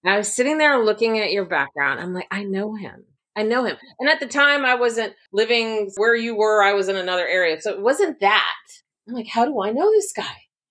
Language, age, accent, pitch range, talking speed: English, 30-49, American, 155-210 Hz, 240 wpm